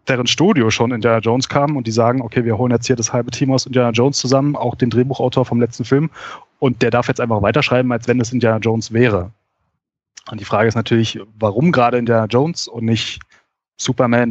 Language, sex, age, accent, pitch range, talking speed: German, male, 30-49, German, 115-140 Hz, 220 wpm